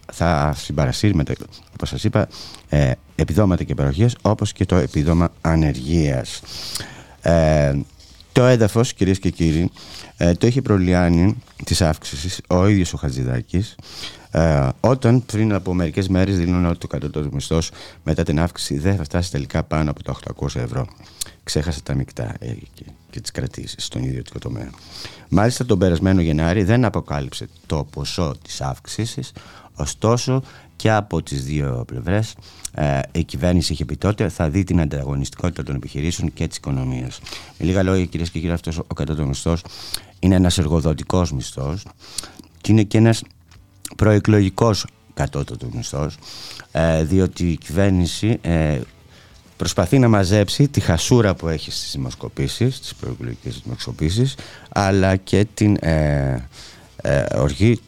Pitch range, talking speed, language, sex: 75-100 Hz, 135 wpm, Greek, male